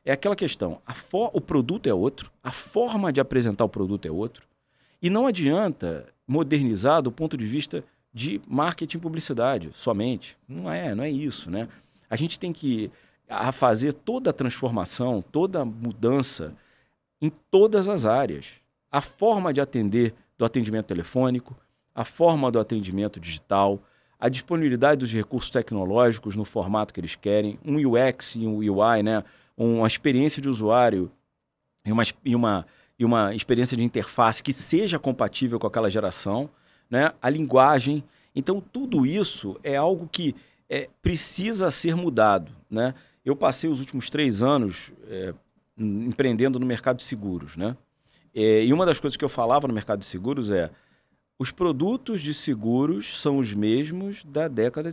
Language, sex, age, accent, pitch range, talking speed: Portuguese, male, 40-59, Brazilian, 110-150 Hz, 160 wpm